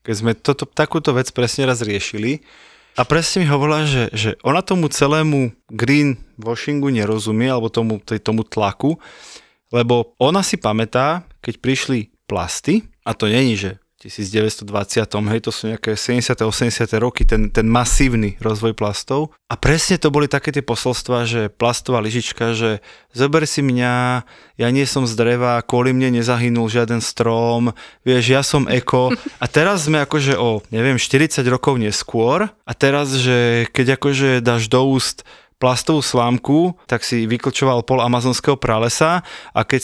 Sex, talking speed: male, 155 wpm